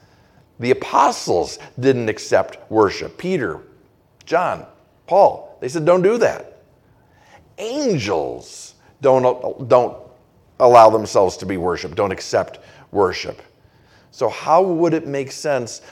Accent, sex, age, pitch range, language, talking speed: American, male, 50-69, 125-150 Hz, English, 115 wpm